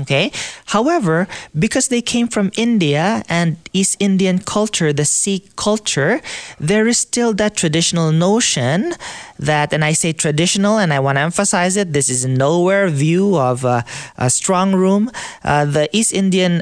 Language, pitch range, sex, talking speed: English, 140-195 Hz, male, 160 wpm